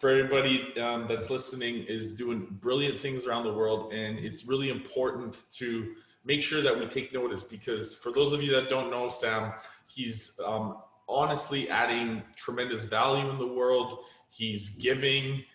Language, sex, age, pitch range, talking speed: English, male, 20-39, 110-130 Hz, 165 wpm